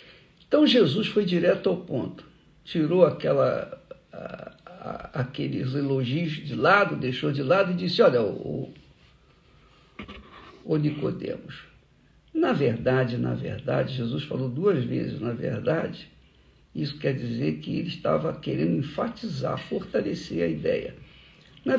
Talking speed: 115 wpm